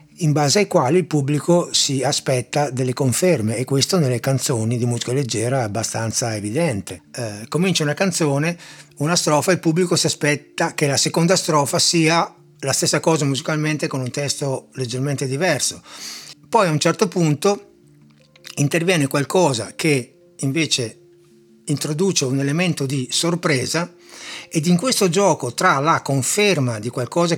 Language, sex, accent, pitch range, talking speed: Italian, male, native, 130-170 Hz, 150 wpm